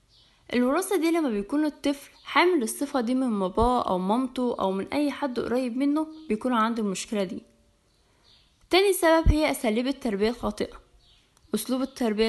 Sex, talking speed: female, 145 wpm